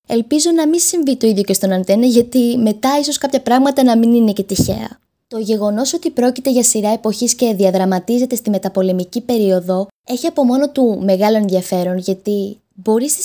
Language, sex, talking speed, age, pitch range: Greek, female, 180 wpm, 20-39, 200-265 Hz